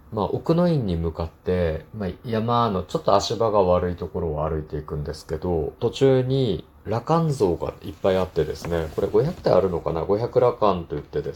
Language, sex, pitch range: Japanese, male, 80-120 Hz